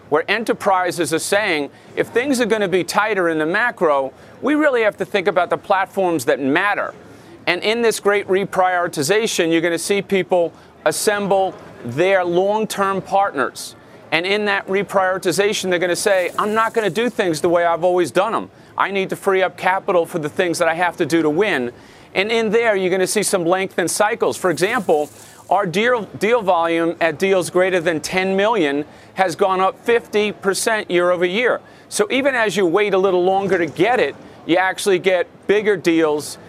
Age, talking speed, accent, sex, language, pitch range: 40-59, 195 wpm, American, male, English, 165-200 Hz